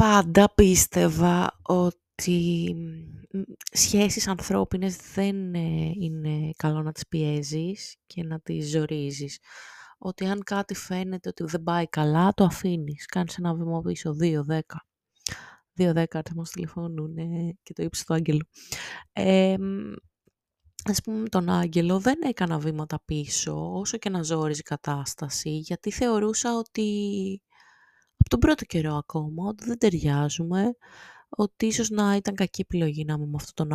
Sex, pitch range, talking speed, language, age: female, 160-210 Hz, 135 wpm, Greek, 20-39